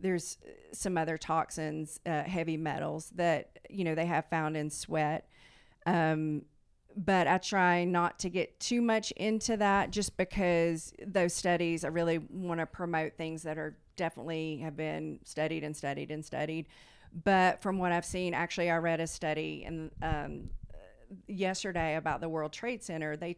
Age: 40-59